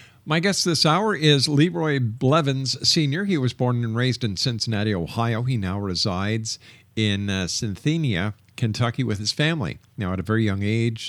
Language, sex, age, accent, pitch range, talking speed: English, male, 50-69, American, 110-135 Hz, 175 wpm